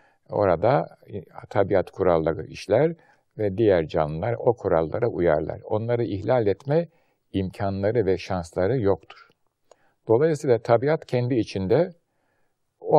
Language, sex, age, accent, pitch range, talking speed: Turkish, male, 60-79, native, 95-140 Hz, 100 wpm